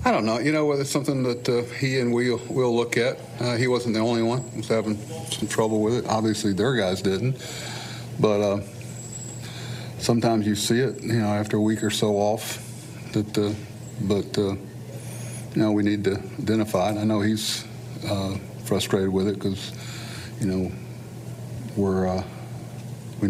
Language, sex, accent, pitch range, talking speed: English, male, American, 95-120 Hz, 185 wpm